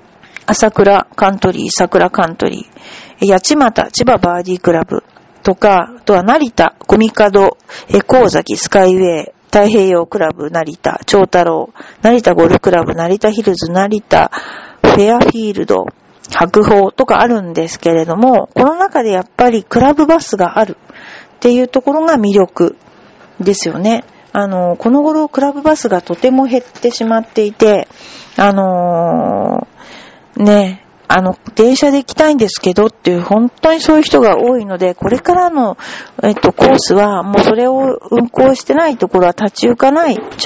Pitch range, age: 185-245 Hz, 40-59